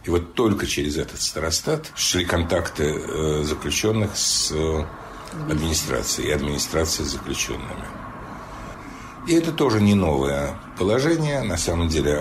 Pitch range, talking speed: 75-95 Hz, 120 wpm